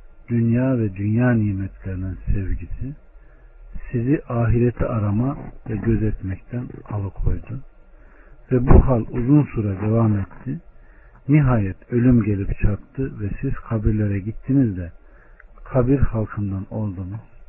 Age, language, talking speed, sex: 60-79, Turkish, 105 wpm, male